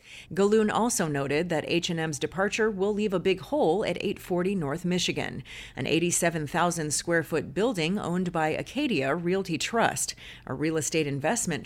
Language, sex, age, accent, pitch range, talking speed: English, female, 30-49, American, 155-195 Hz, 140 wpm